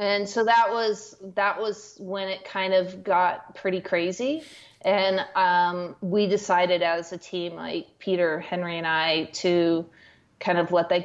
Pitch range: 175-205 Hz